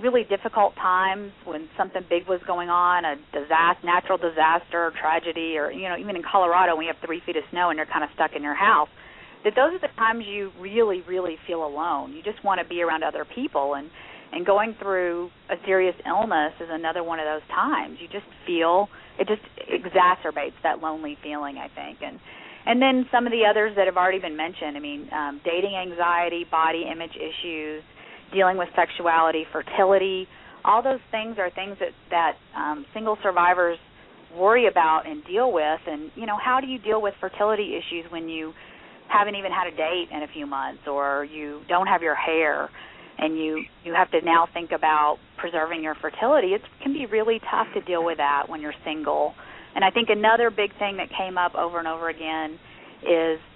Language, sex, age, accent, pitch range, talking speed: English, female, 40-59, American, 160-200 Hz, 200 wpm